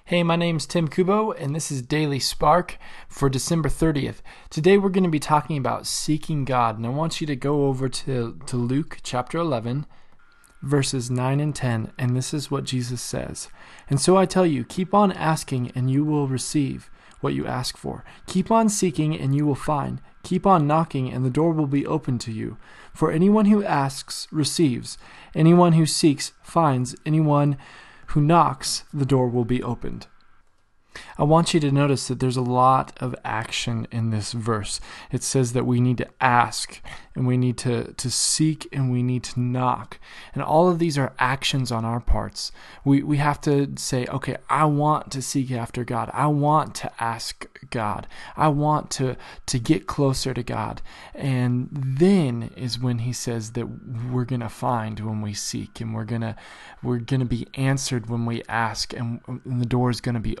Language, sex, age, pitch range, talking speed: English, male, 20-39, 120-150 Hz, 190 wpm